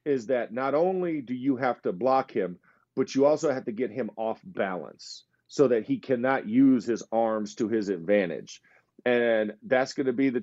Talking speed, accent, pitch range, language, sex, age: 200 wpm, American, 130-170 Hz, English, male, 40-59